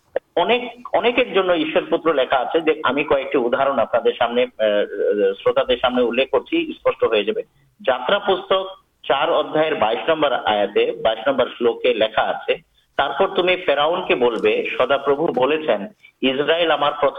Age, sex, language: 50-69, male, Urdu